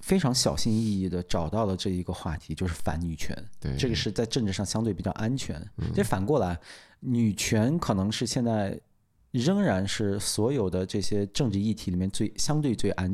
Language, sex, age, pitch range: Chinese, male, 20-39, 90-115 Hz